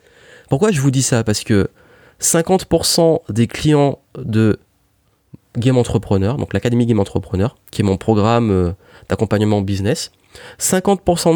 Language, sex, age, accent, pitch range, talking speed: French, male, 30-49, French, 105-150 Hz, 125 wpm